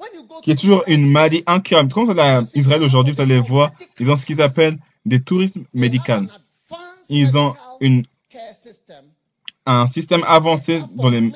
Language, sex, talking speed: French, male, 170 wpm